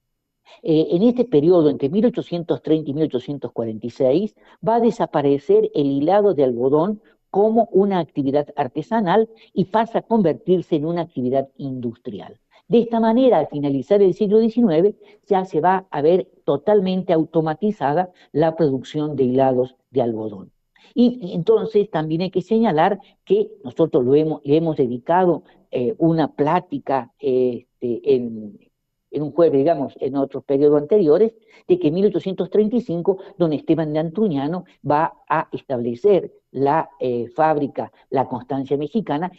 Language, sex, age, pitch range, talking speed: Spanish, female, 50-69, 145-200 Hz, 140 wpm